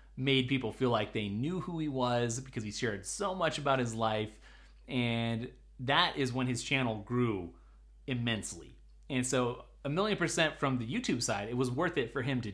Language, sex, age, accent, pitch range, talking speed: English, male, 30-49, American, 120-155 Hz, 195 wpm